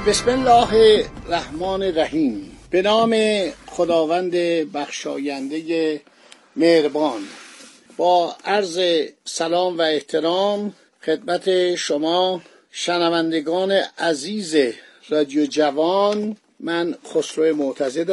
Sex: male